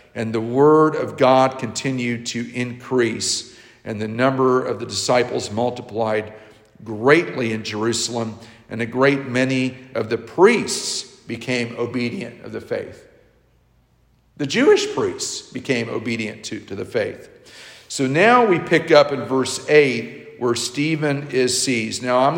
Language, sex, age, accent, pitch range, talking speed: English, male, 50-69, American, 120-145 Hz, 140 wpm